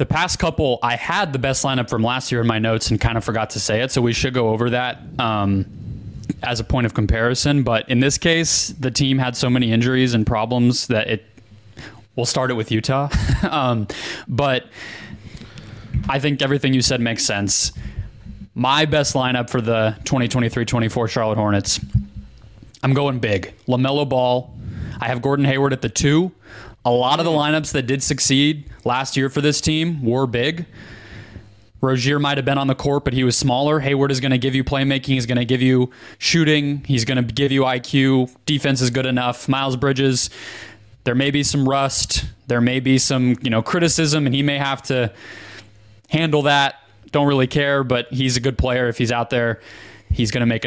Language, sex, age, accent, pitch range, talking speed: English, male, 20-39, American, 115-140 Hz, 195 wpm